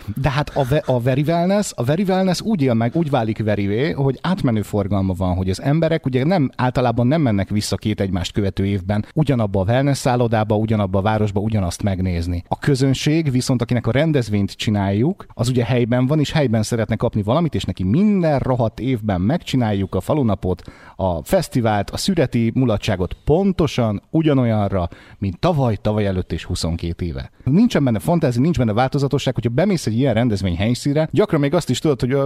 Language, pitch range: Hungarian, 105-145 Hz